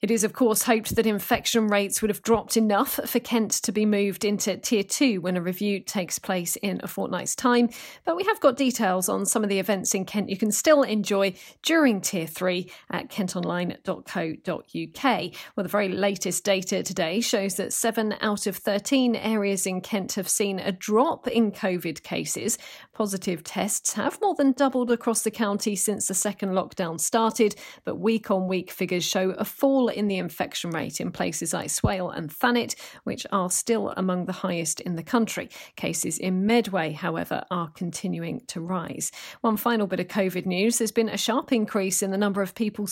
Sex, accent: female, British